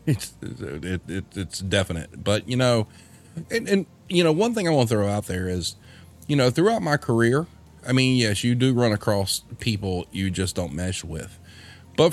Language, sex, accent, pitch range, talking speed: English, male, American, 90-120 Hz, 195 wpm